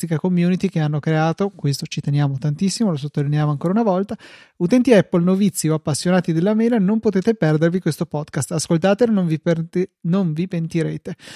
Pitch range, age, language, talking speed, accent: 160-190 Hz, 30-49, Italian, 165 wpm, native